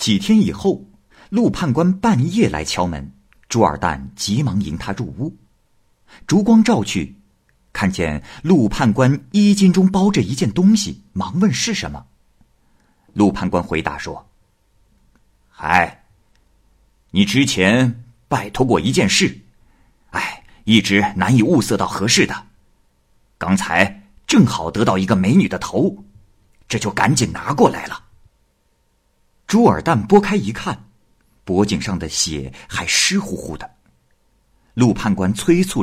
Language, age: Chinese, 50-69